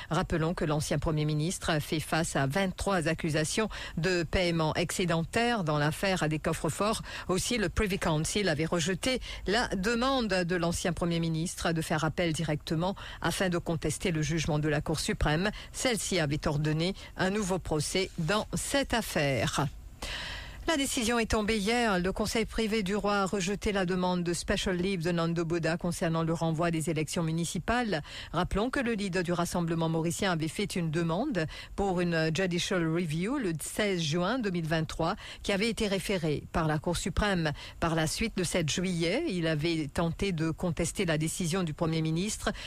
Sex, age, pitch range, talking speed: female, 50-69, 160-200 Hz, 170 wpm